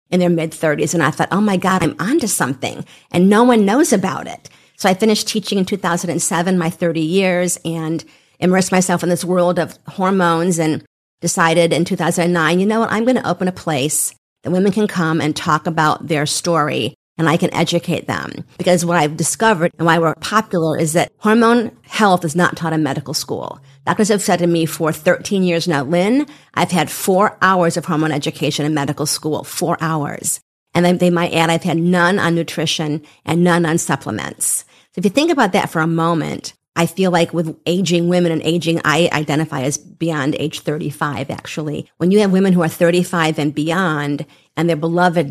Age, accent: 50-69, American